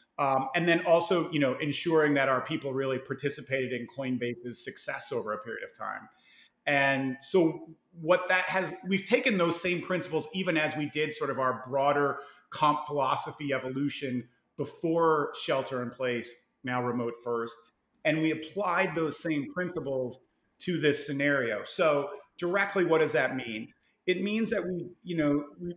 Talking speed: 160 wpm